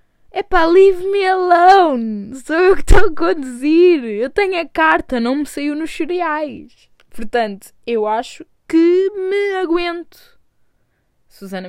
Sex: female